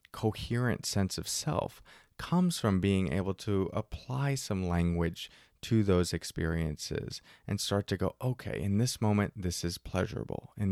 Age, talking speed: 30-49, 150 wpm